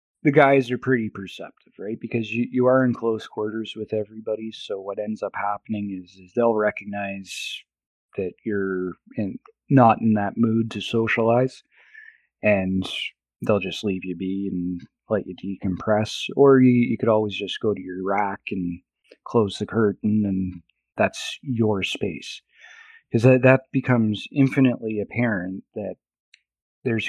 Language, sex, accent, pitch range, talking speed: English, male, American, 100-125 Hz, 150 wpm